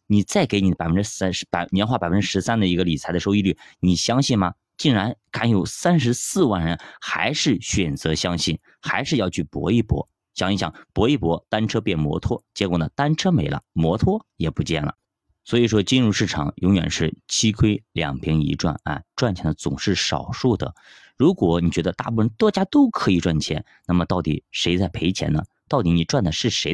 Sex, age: male, 20-39